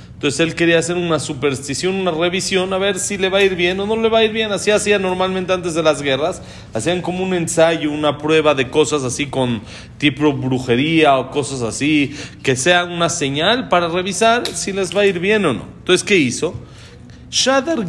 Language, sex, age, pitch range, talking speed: Spanish, male, 40-59, 135-190 Hz, 210 wpm